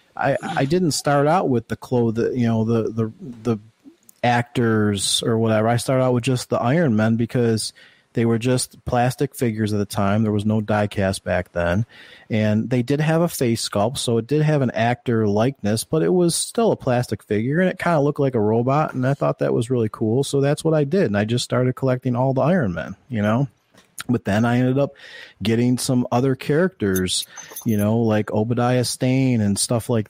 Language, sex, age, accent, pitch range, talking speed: English, male, 30-49, American, 105-130 Hz, 215 wpm